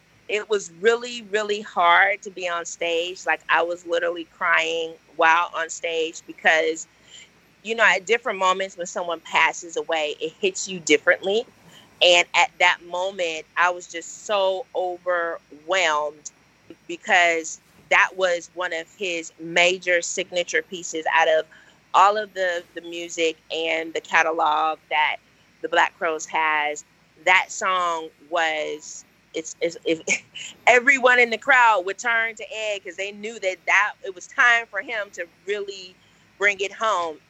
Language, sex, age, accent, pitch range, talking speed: English, female, 30-49, American, 165-200 Hz, 150 wpm